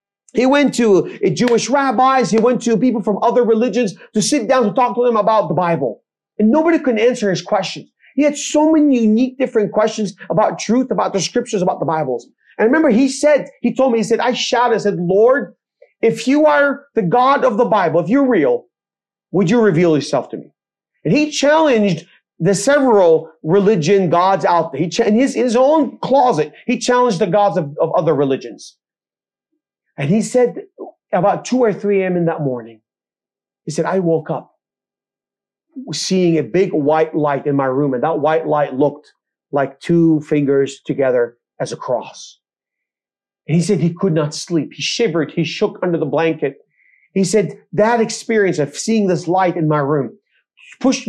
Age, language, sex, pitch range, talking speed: 30-49, English, male, 165-245 Hz, 190 wpm